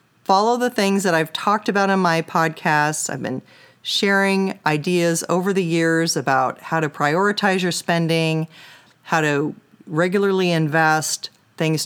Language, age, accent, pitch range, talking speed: English, 40-59, American, 155-185 Hz, 140 wpm